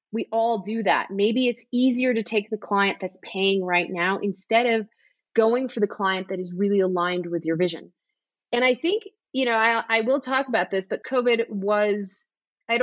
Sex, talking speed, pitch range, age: female, 200 wpm, 180-230 Hz, 30-49